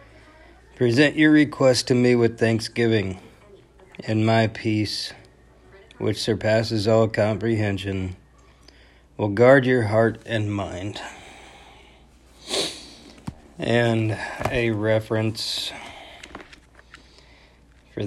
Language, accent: English, American